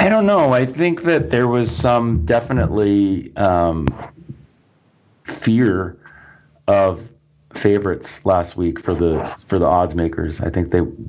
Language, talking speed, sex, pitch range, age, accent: English, 135 wpm, male, 80-95 Hz, 30-49, American